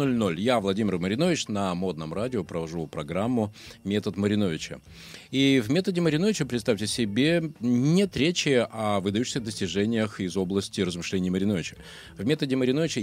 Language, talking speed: Russian, 135 wpm